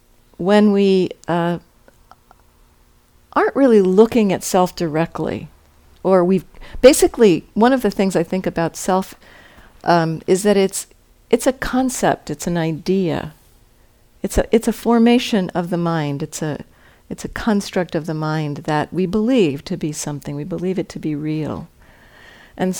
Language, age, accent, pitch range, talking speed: English, 50-69, American, 145-200 Hz, 155 wpm